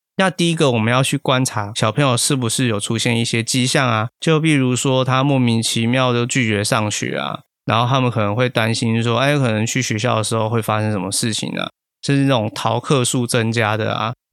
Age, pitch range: 20-39, 110-130 Hz